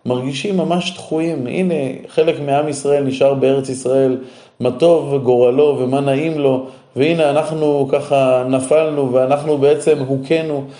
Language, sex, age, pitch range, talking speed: Hebrew, male, 20-39, 130-155 Hz, 130 wpm